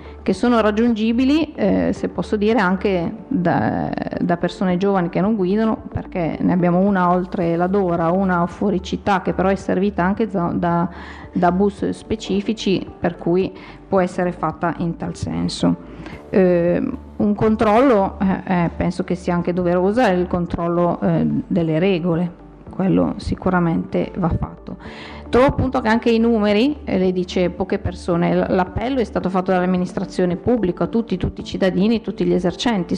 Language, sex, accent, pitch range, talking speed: Italian, female, native, 175-210 Hz, 155 wpm